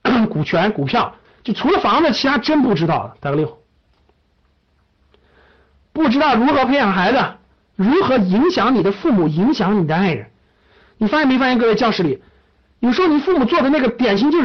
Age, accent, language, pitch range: 50-69, native, Chinese, 195-300 Hz